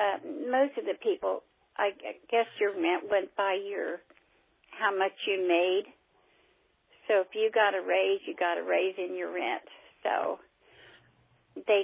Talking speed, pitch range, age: 155 wpm, 195-255 Hz, 50-69